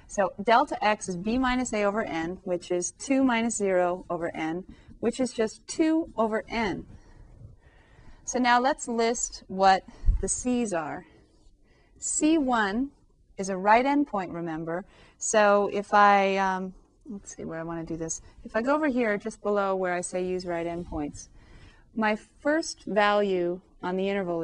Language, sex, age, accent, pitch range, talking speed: English, female, 30-49, American, 180-235 Hz, 165 wpm